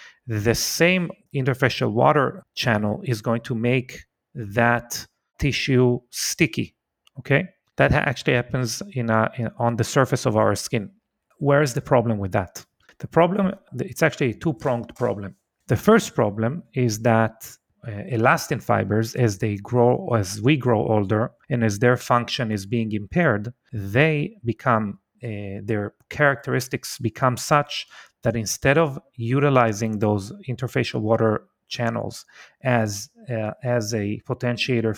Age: 30-49